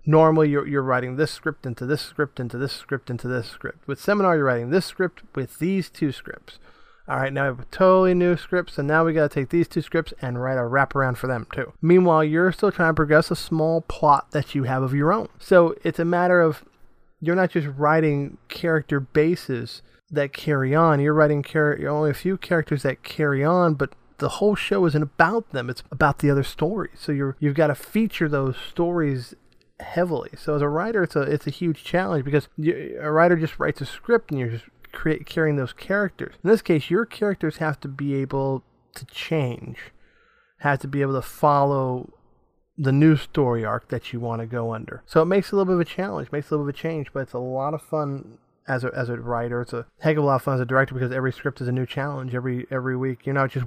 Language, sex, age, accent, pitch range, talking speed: English, male, 30-49, American, 130-160 Hz, 245 wpm